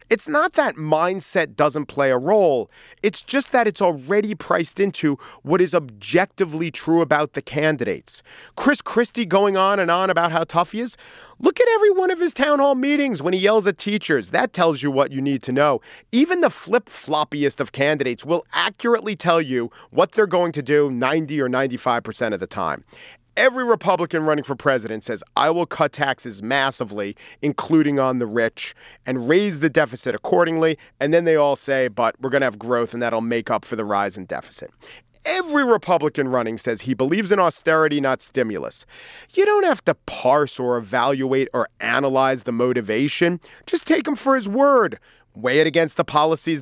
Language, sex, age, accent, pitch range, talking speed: English, male, 40-59, American, 135-210 Hz, 190 wpm